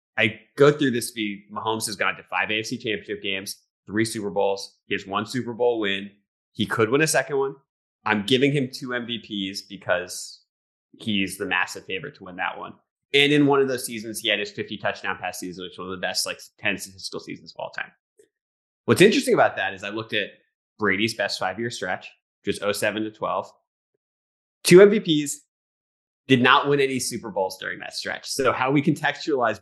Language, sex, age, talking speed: English, male, 20-39, 205 wpm